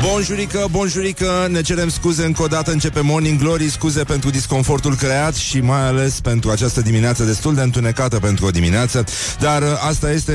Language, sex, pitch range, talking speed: Romanian, male, 100-140 Hz, 185 wpm